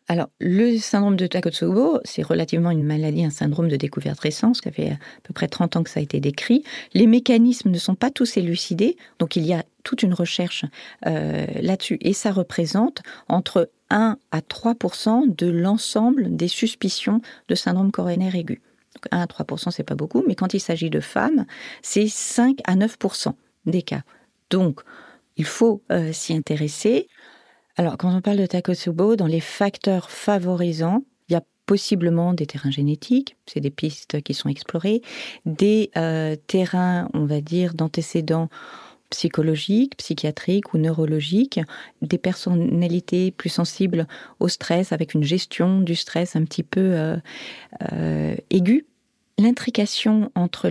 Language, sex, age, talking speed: French, female, 40-59, 160 wpm